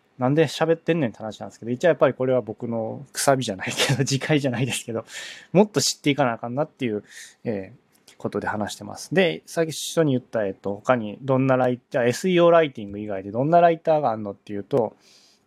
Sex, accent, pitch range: male, native, 115-190 Hz